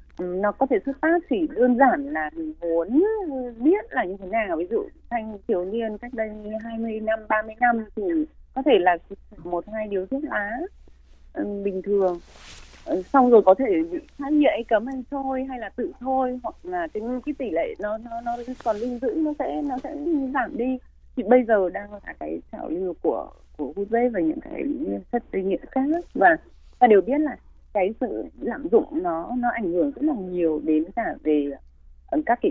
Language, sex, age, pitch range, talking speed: Vietnamese, female, 20-39, 195-300 Hz, 200 wpm